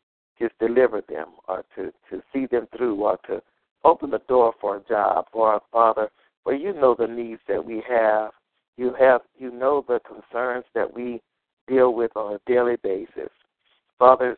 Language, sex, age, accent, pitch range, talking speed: English, male, 60-79, American, 115-125 Hz, 185 wpm